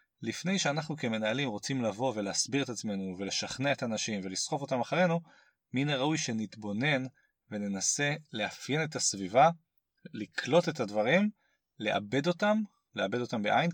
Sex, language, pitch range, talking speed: male, Hebrew, 105-150 Hz, 125 wpm